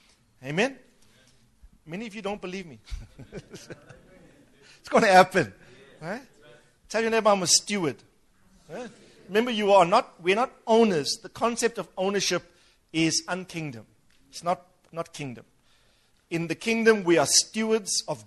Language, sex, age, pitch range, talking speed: English, male, 50-69, 140-185 Hz, 140 wpm